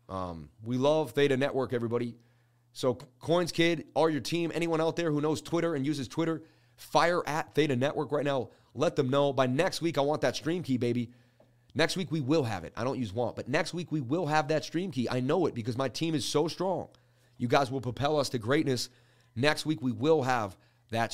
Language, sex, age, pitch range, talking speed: English, male, 30-49, 120-150 Hz, 225 wpm